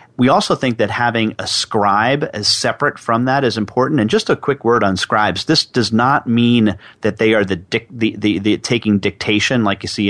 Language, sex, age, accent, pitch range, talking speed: English, male, 40-59, American, 100-120 Hz, 225 wpm